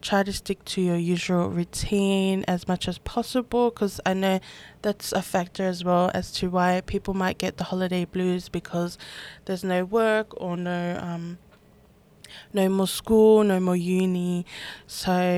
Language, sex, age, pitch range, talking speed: English, female, 10-29, 180-200 Hz, 165 wpm